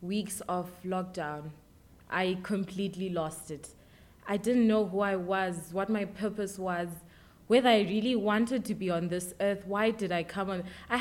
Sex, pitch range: female, 180-220 Hz